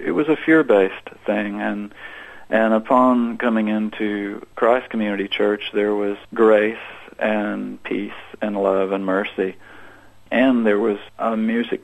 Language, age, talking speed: English, 40-59, 135 wpm